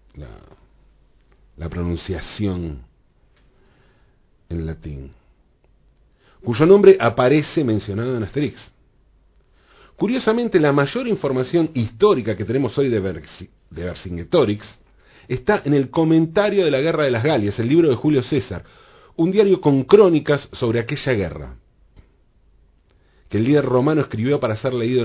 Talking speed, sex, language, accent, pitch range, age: 125 wpm, male, Spanish, Argentinian, 100-145 Hz, 40-59